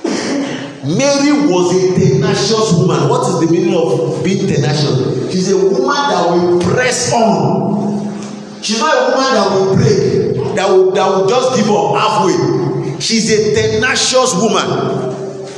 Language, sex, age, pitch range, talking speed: English, male, 50-69, 155-210 Hz, 145 wpm